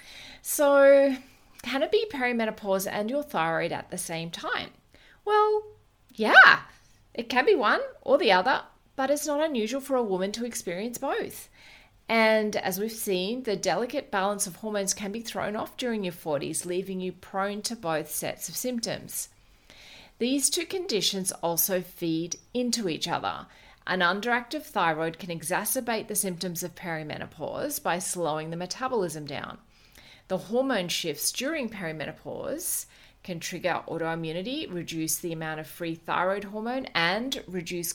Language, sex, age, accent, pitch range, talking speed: English, female, 40-59, Australian, 175-250 Hz, 150 wpm